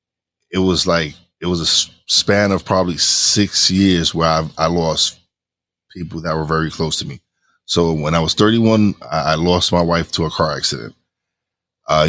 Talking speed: 185 wpm